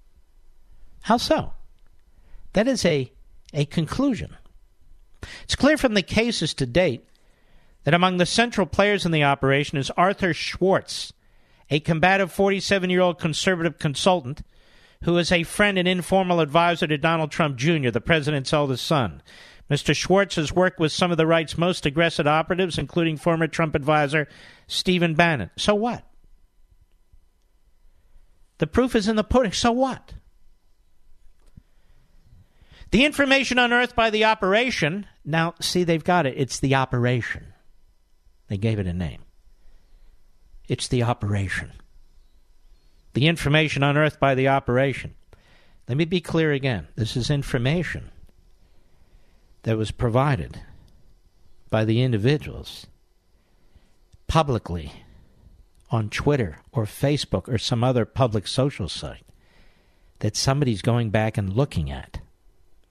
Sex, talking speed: male, 125 wpm